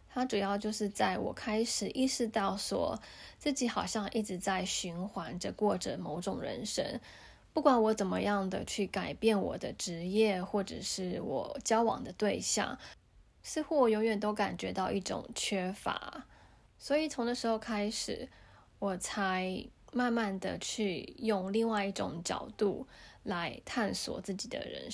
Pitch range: 195-235 Hz